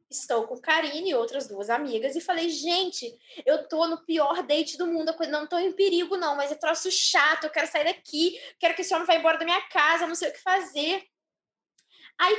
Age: 10-29